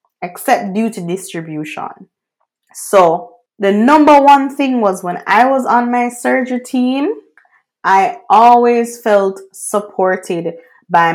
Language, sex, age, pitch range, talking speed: English, female, 20-39, 185-250 Hz, 120 wpm